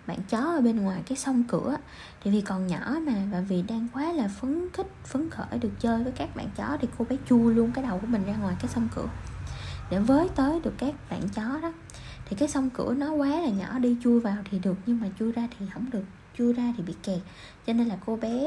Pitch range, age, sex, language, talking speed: 195-245 Hz, 10-29, female, Vietnamese, 260 wpm